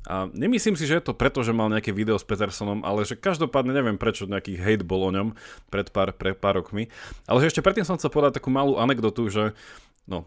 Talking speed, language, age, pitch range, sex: 235 wpm, Slovak, 30-49, 100-120 Hz, male